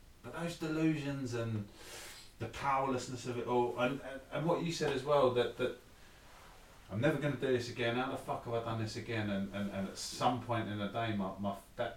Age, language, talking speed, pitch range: 30-49, English, 225 wpm, 110-155 Hz